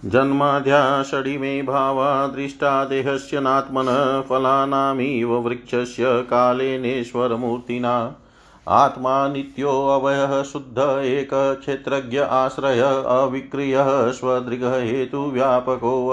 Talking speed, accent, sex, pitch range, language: 60 wpm, native, male, 125-140 Hz, Hindi